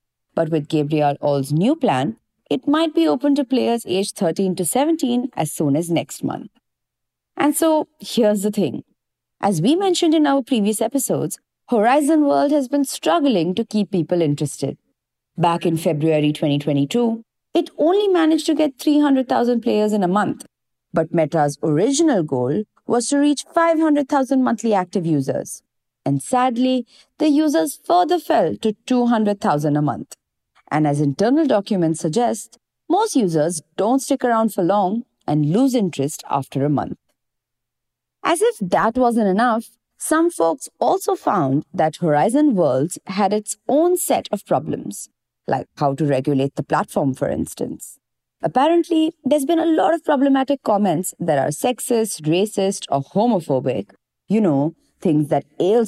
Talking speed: 150 wpm